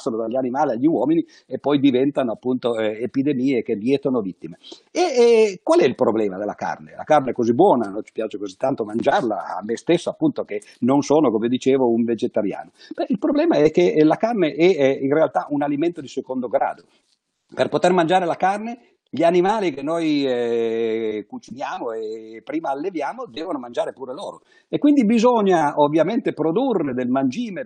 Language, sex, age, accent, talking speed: Italian, male, 50-69, native, 180 wpm